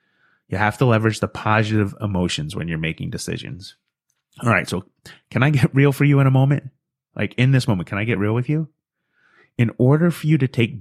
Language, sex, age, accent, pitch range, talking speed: English, male, 30-49, American, 105-135 Hz, 215 wpm